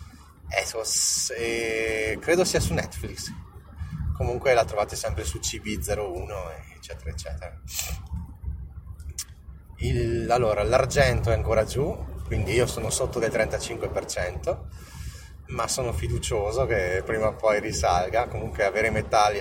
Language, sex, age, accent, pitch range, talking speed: Italian, male, 30-49, native, 85-115 Hz, 110 wpm